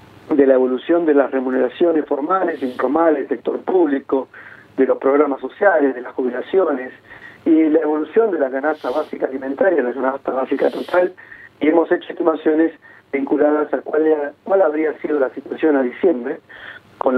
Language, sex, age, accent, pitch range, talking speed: Spanish, male, 40-59, Argentinian, 135-165 Hz, 155 wpm